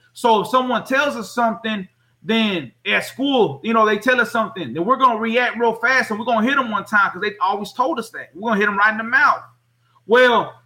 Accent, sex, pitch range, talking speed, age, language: American, male, 210-250 Hz, 240 wpm, 30-49, English